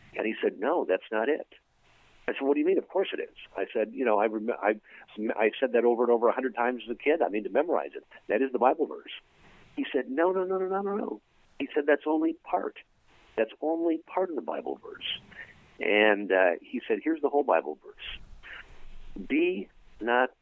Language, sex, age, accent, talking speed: English, male, 50-69, American, 225 wpm